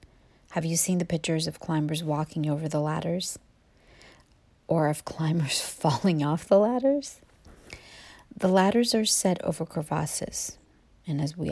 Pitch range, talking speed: 150-170 Hz, 140 wpm